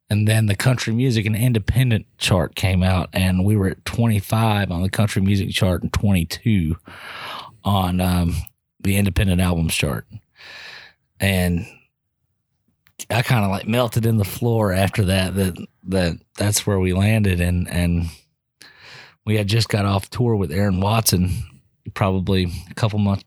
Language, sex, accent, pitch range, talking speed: English, male, American, 95-110 Hz, 155 wpm